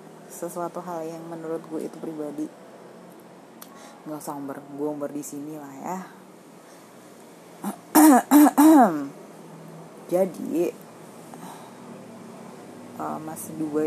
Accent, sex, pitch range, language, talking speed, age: native, female, 155-220 Hz, Indonesian, 85 wpm, 30-49